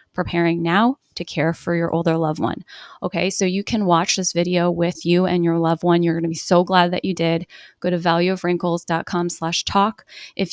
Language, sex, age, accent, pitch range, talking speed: English, female, 20-39, American, 170-190 Hz, 205 wpm